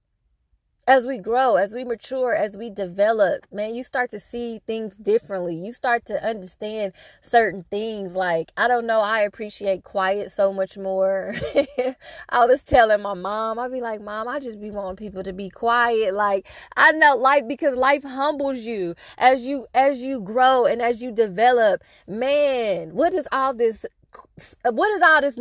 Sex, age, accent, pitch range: female, 20-39, American, 200-255 Hz